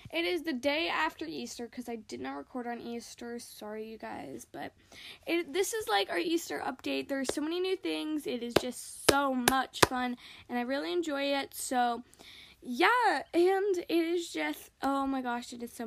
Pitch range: 245-315 Hz